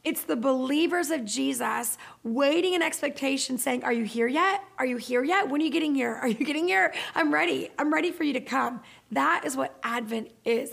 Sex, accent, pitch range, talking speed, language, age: female, American, 230-310 Hz, 220 wpm, English, 30-49